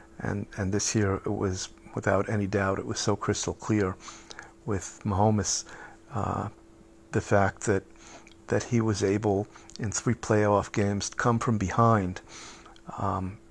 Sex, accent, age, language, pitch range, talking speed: male, American, 50-69, English, 100-110 Hz, 145 wpm